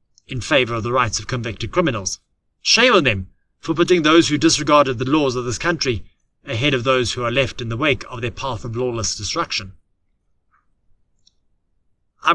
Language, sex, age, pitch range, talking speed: English, male, 30-49, 110-160 Hz, 180 wpm